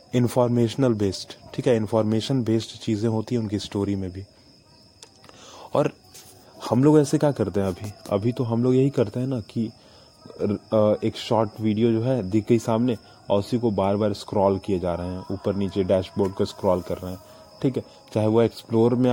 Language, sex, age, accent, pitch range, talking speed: Hindi, male, 20-39, native, 105-125 Hz, 200 wpm